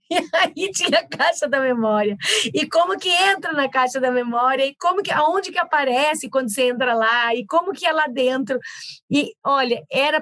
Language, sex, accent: Portuguese, female, Brazilian